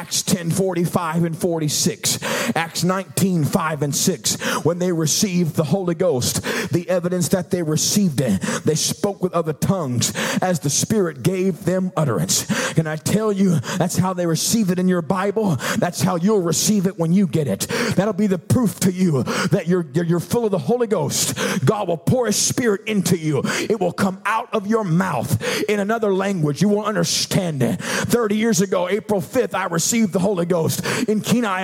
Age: 40-59